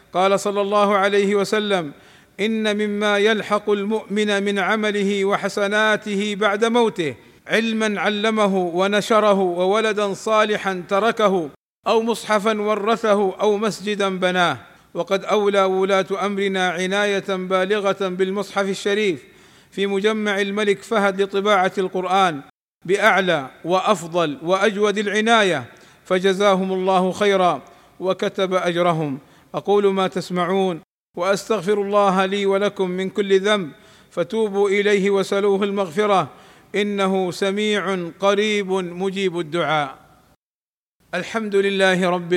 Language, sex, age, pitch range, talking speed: Arabic, male, 50-69, 180-205 Hz, 100 wpm